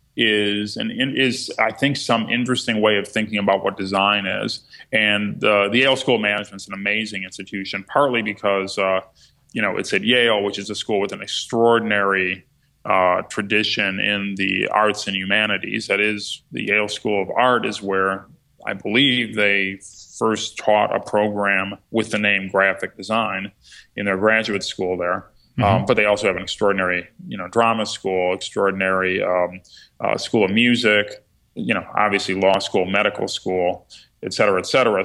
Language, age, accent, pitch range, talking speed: English, 30-49, American, 95-110 Hz, 175 wpm